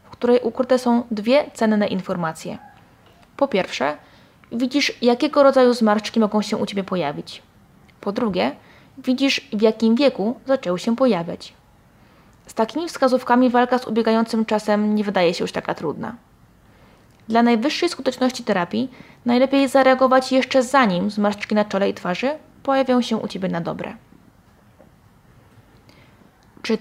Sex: female